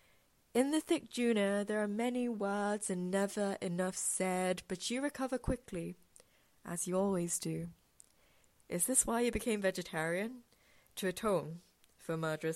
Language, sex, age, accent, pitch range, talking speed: English, female, 20-39, British, 170-205 Hz, 145 wpm